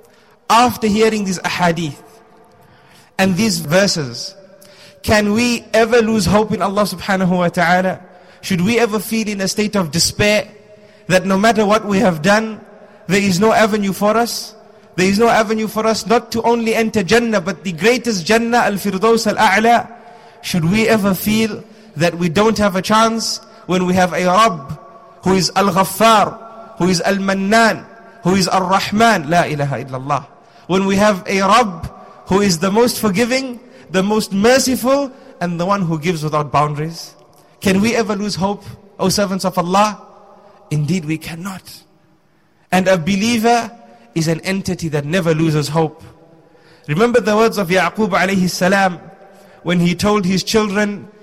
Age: 30-49